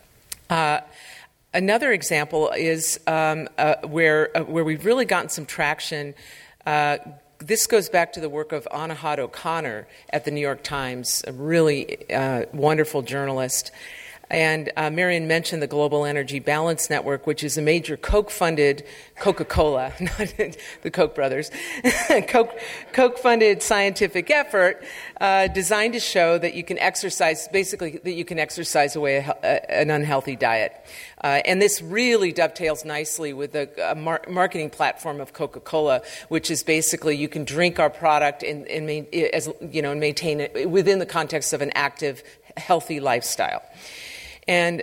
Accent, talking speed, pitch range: American, 155 wpm, 150-180 Hz